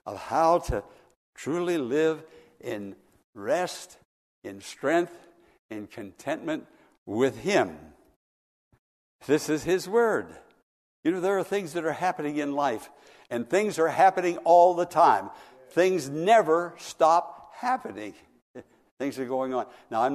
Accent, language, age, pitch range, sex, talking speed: American, English, 60-79, 140-230 Hz, male, 130 wpm